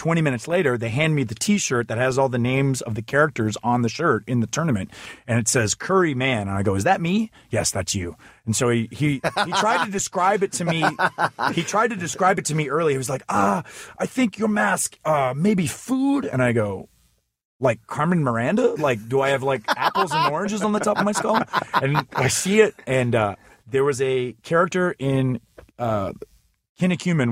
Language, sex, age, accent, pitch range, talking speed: English, male, 30-49, American, 110-145 Hz, 215 wpm